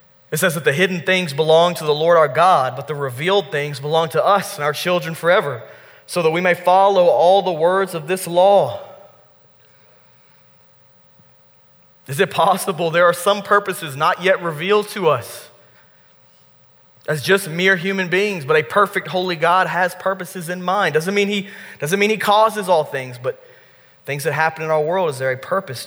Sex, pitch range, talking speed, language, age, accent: male, 145-200 Hz, 180 wpm, English, 20-39, American